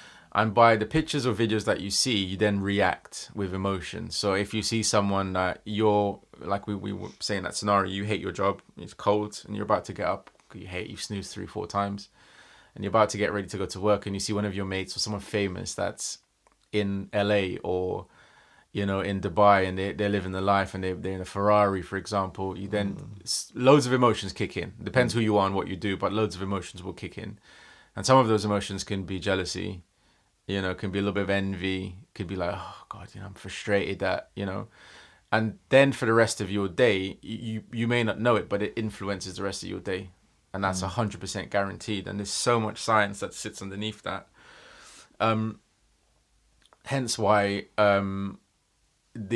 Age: 20-39